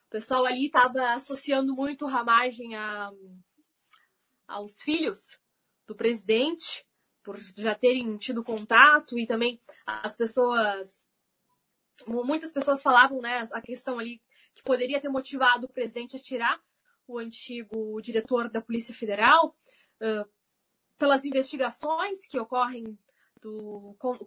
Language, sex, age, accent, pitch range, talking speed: Portuguese, female, 20-39, Brazilian, 235-290 Hz, 120 wpm